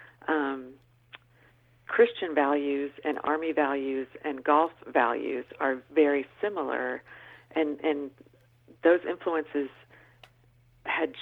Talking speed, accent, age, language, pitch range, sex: 90 wpm, American, 40-59, English, 140-160 Hz, female